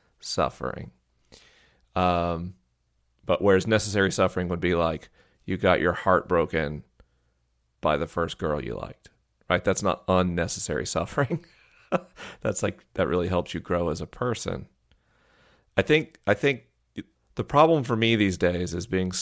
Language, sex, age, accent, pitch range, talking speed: English, male, 40-59, American, 80-95 Hz, 145 wpm